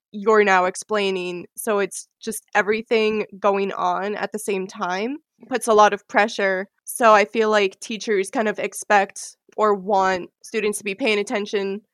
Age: 20-39